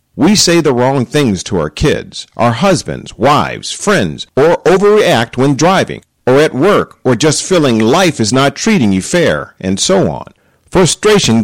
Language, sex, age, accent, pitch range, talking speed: English, male, 50-69, American, 110-160 Hz, 170 wpm